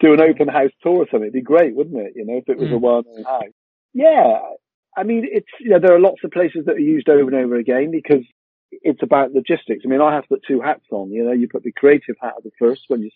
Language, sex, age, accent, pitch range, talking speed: English, male, 40-59, British, 110-155 Hz, 285 wpm